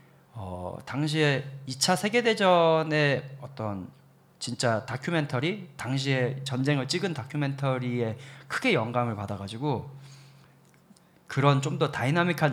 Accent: native